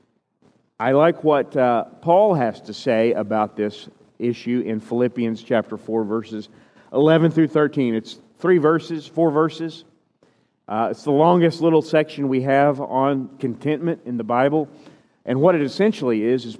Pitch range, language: 120-155 Hz, English